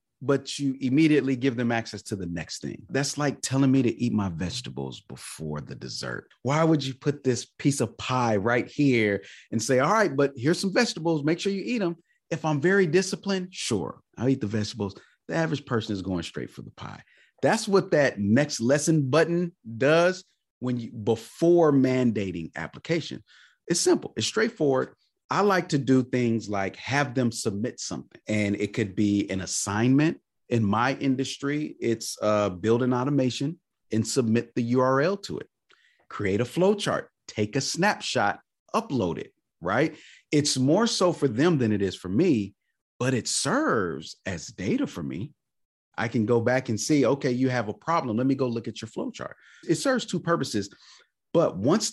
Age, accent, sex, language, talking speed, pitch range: 30-49, American, male, English, 185 wpm, 110-155 Hz